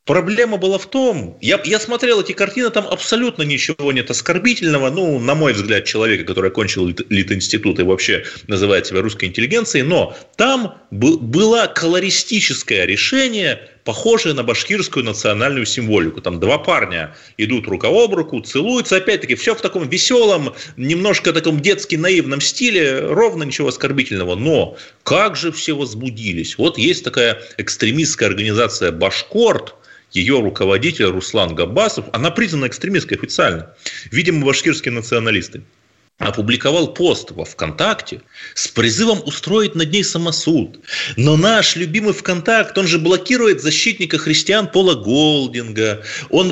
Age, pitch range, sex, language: 30-49, 120-205 Hz, male, Russian